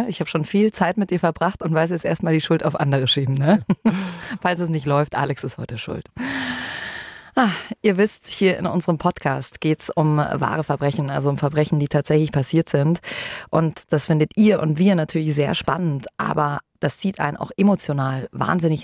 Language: German